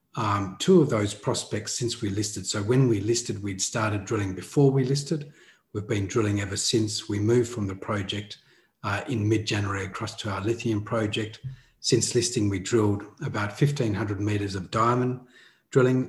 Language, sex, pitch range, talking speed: English, male, 100-120 Hz, 170 wpm